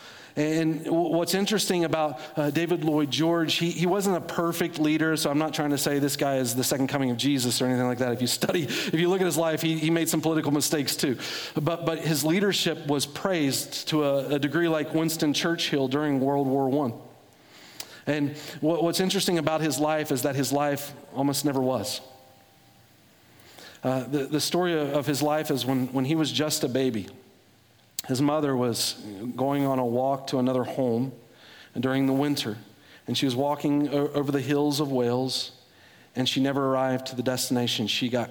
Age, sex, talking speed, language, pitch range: 40-59, male, 195 wpm, English, 125-155 Hz